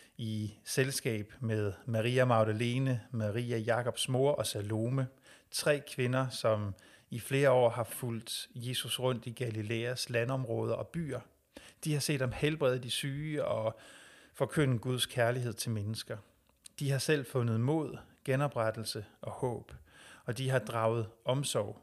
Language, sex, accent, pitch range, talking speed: Danish, male, native, 110-130 Hz, 140 wpm